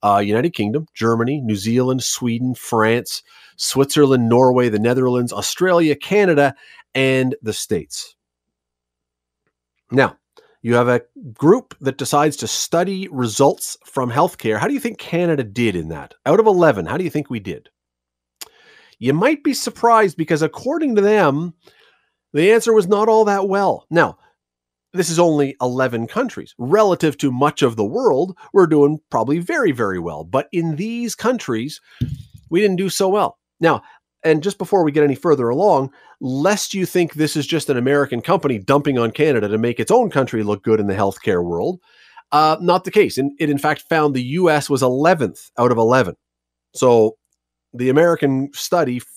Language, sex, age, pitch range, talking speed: English, male, 40-59, 115-170 Hz, 170 wpm